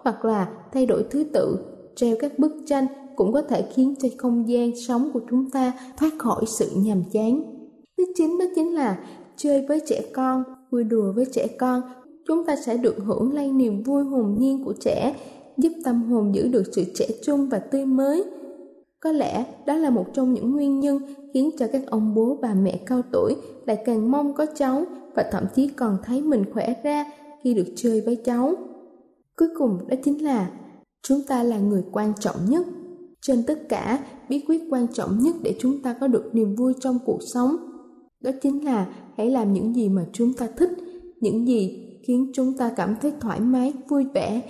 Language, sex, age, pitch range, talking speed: Vietnamese, female, 10-29, 225-280 Hz, 205 wpm